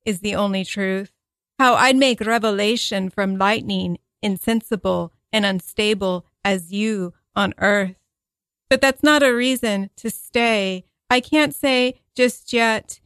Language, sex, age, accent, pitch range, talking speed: English, female, 40-59, American, 200-235 Hz, 135 wpm